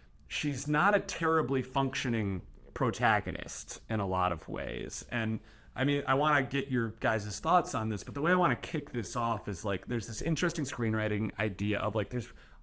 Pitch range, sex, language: 105-145 Hz, male, English